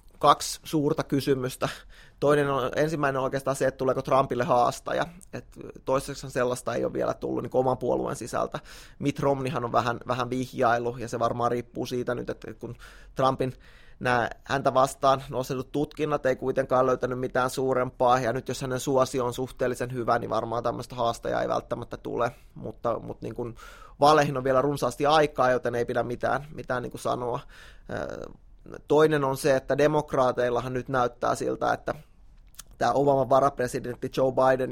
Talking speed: 160 wpm